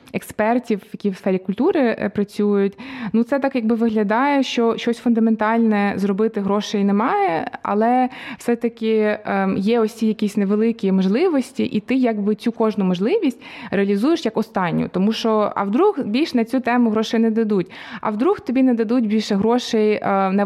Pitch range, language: 205-250 Hz, Ukrainian